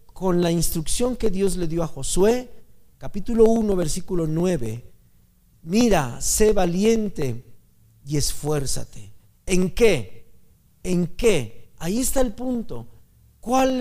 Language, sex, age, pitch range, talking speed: Spanish, male, 50-69, 145-220 Hz, 115 wpm